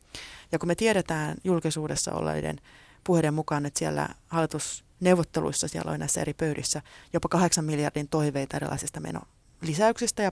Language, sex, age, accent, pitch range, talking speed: Finnish, female, 30-49, native, 150-175 Hz, 135 wpm